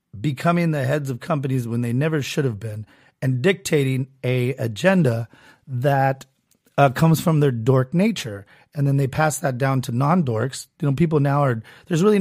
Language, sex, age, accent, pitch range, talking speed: English, male, 30-49, American, 125-160 Hz, 180 wpm